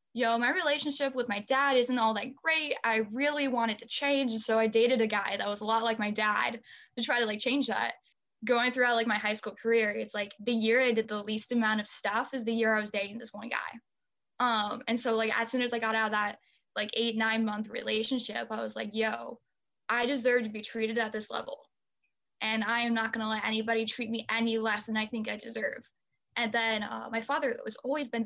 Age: 10-29